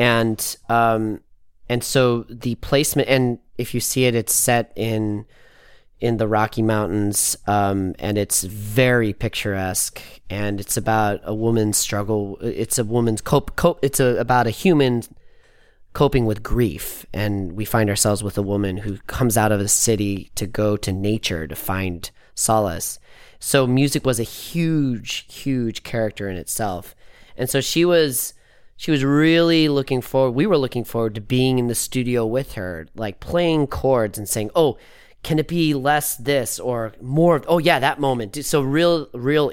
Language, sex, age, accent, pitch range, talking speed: English, male, 30-49, American, 105-130 Hz, 175 wpm